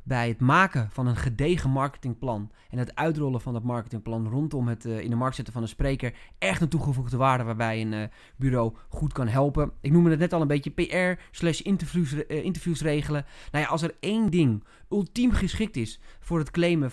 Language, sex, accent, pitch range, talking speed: Dutch, male, Dutch, 120-155 Hz, 205 wpm